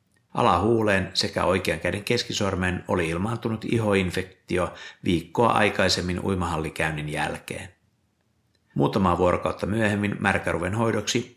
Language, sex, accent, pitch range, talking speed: Finnish, male, native, 90-110 Hz, 90 wpm